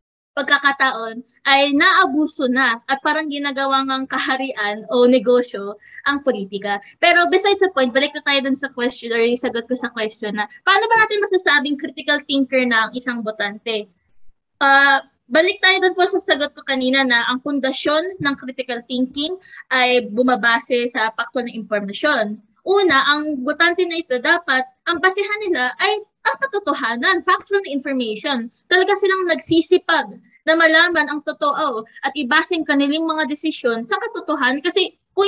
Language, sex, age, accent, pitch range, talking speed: Filipino, female, 20-39, native, 250-315 Hz, 155 wpm